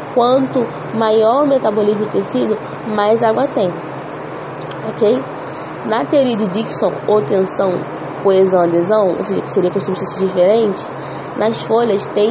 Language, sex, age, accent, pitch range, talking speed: English, female, 20-39, Brazilian, 200-240 Hz, 130 wpm